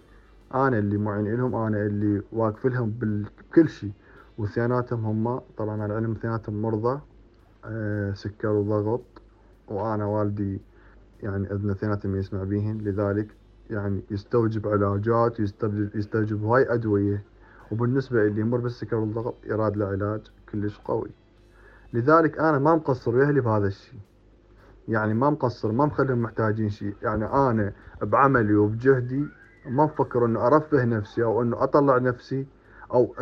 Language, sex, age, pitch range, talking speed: Arabic, male, 30-49, 105-125 Hz, 125 wpm